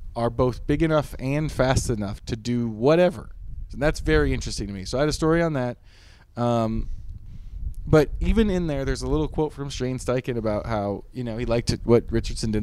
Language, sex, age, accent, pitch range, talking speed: English, male, 20-39, American, 100-125 Hz, 210 wpm